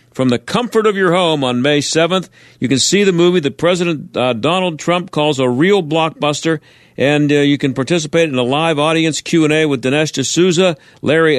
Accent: American